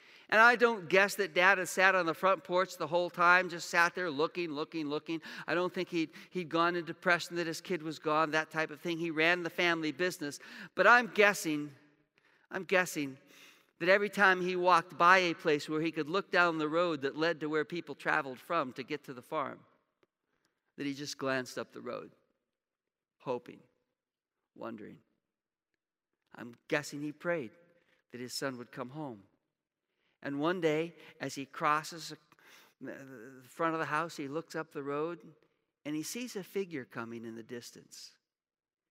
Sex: male